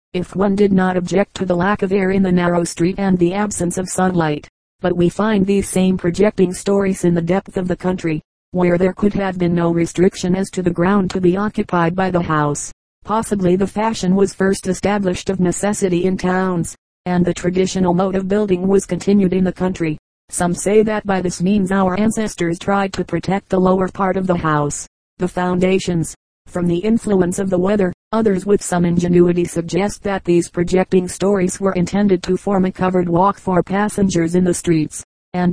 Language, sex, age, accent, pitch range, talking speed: English, female, 40-59, American, 175-195 Hz, 200 wpm